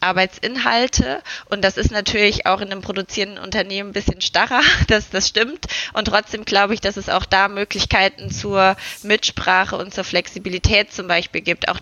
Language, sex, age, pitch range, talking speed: German, female, 20-39, 190-215 Hz, 175 wpm